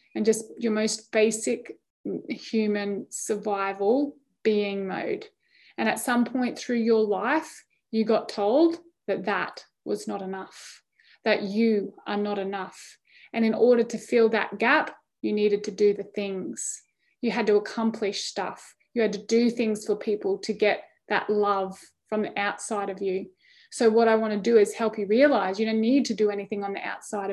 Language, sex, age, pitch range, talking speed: English, female, 20-39, 210-255 Hz, 180 wpm